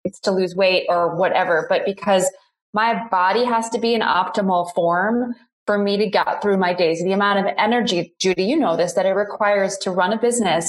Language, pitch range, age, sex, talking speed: English, 185-230 Hz, 20-39, female, 210 wpm